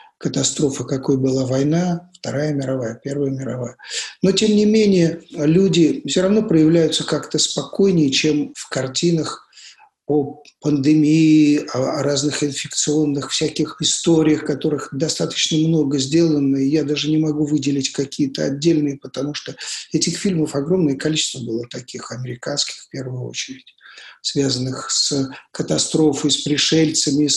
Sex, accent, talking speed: male, native, 125 wpm